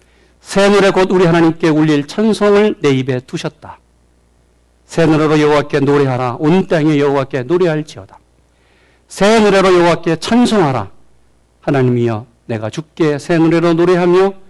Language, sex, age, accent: Korean, male, 50-69, native